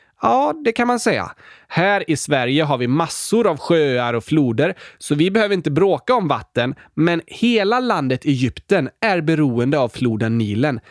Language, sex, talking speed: Swedish, male, 170 wpm